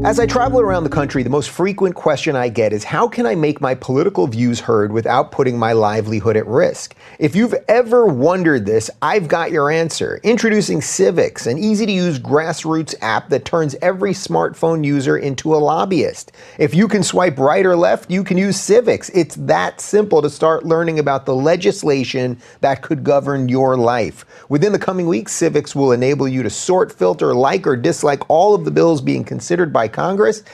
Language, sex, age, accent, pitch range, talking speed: English, male, 30-49, American, 135-185 Hz, 195 wpm